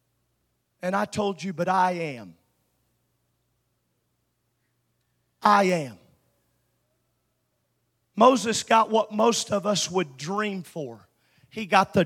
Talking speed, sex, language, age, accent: 105 wpm, male, English, 40-59, American